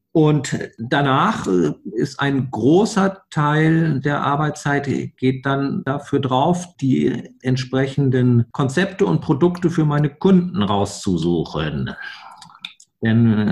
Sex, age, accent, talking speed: male, 50-69, German, 100 wpm